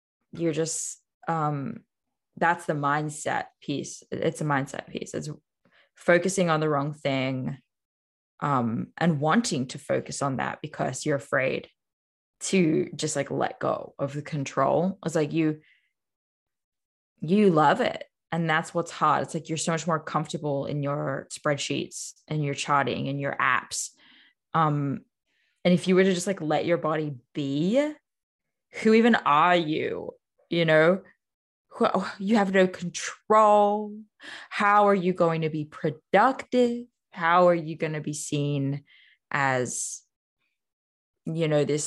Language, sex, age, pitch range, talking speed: English, female, 10-29, 140-175 Hz, 145 wpm